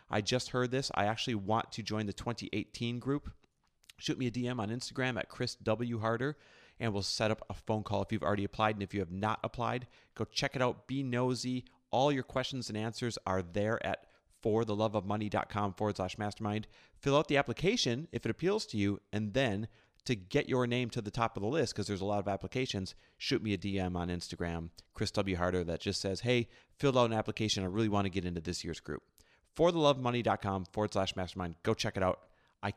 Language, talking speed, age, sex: English, 220 wpm, 30-49, male